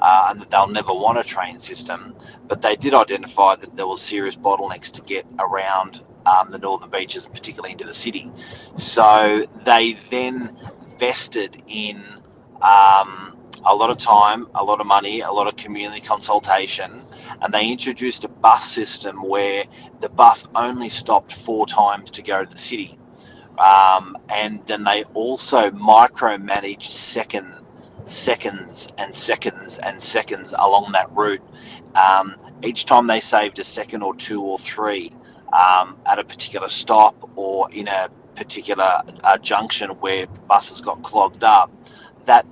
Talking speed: 155 wpm